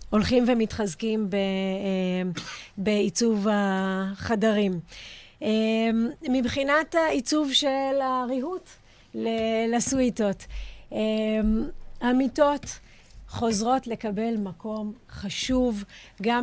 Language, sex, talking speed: Hebrew, female, 55 wpm